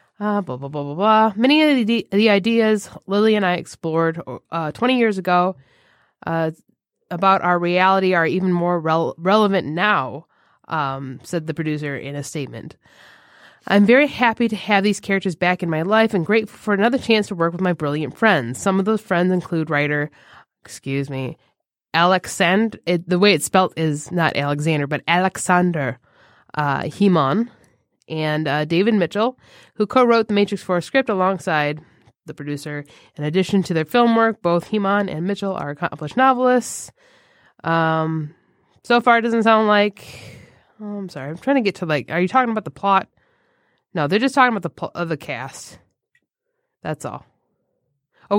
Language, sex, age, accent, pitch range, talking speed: English, female, 20-39, American, 155-230 Hz, 175 wpm